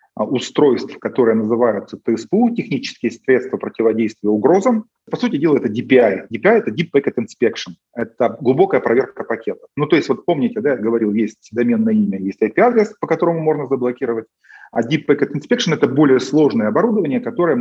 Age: 30-49